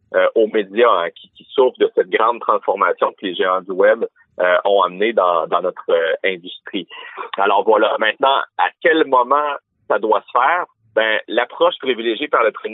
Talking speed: 190 wpm